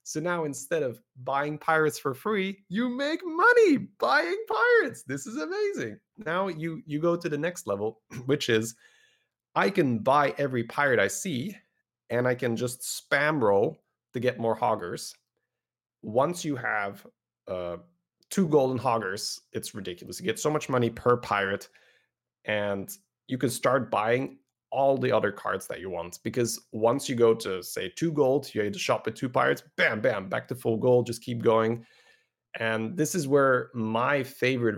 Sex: male